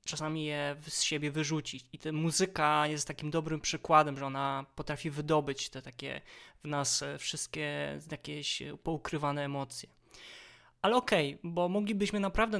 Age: 20-39